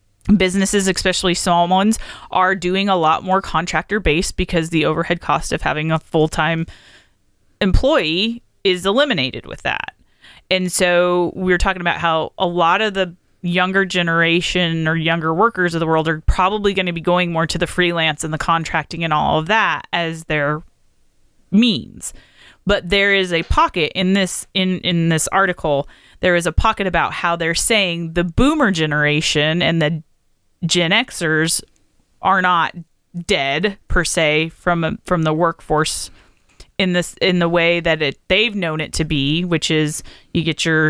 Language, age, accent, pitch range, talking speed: English, 30-49, American, 160-190 Hz, 165 wpm